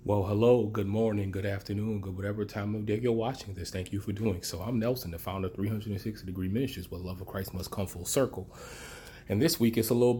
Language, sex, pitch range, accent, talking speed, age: English, male, 95-120 Hz, American, 245 wpm, 30-49